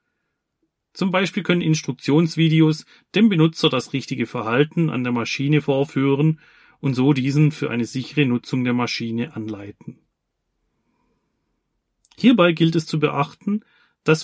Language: German